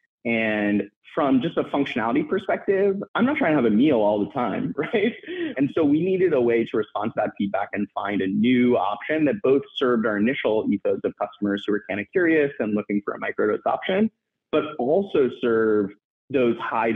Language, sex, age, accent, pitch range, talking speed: English, male, 30-49, American, 105-150 Hz, 200 wpm